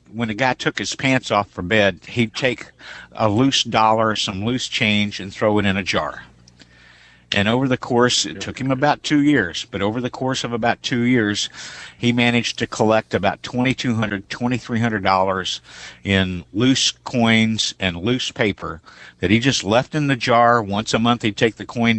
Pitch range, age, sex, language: 100-120 Hz, 60-79, male, English